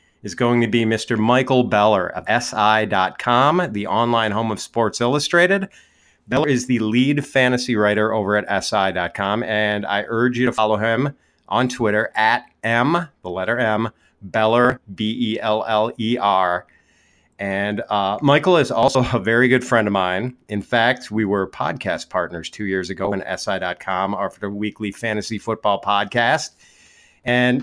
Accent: American